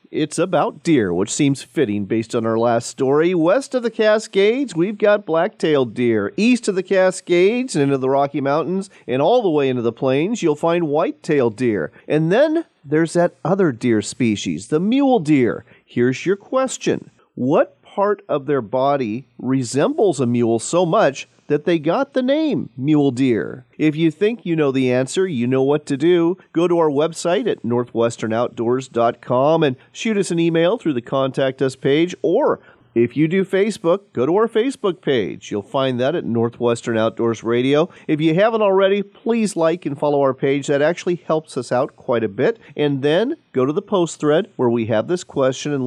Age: 40-59